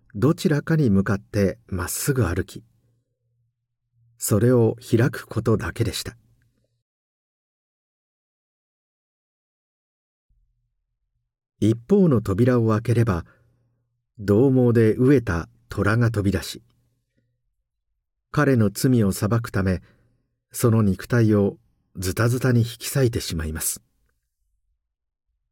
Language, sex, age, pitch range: Japanese, male, 50-69, 80-120 Hz